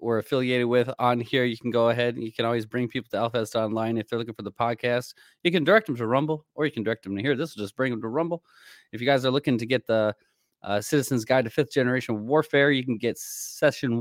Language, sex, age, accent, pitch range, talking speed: English, male, 20-39, American, 110-135 Hz, 270 wpm